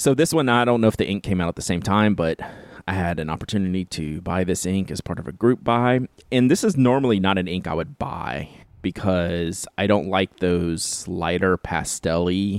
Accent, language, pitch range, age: American, English, 85-105 Hz, 30-49